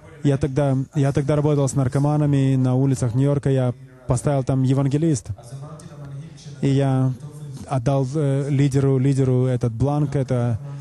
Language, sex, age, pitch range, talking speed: English, male, 20-39, 135-155 Hz, 130 wpm